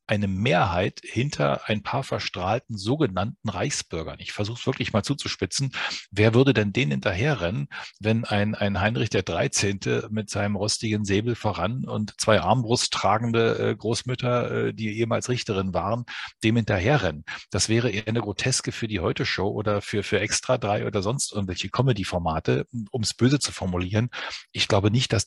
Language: German